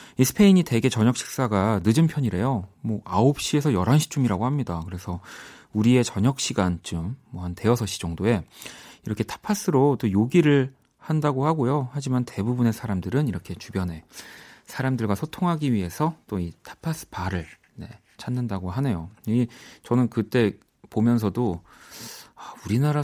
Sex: male